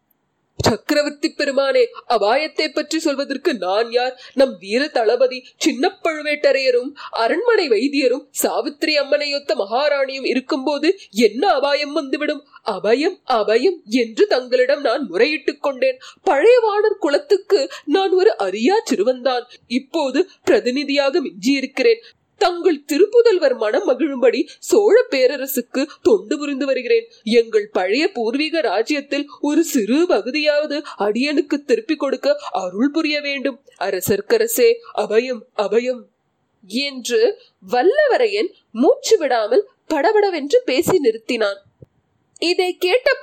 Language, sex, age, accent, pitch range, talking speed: Tamil, female, 30-49, native, 270-435 Hz, 95 wpm